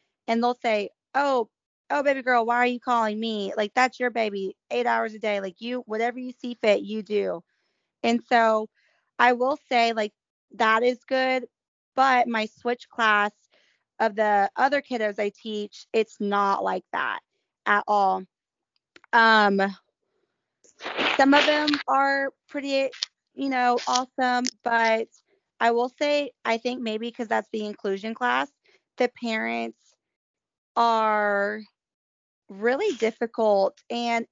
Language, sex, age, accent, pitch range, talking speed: English, female, 20-39, American, 210-250 Hz, 140 wpm